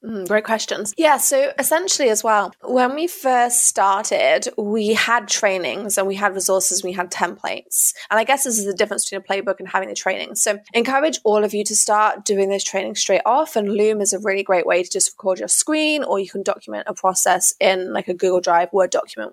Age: 20-39